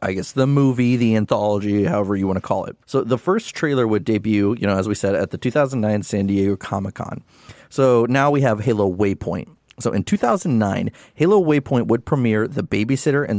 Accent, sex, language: American, male, English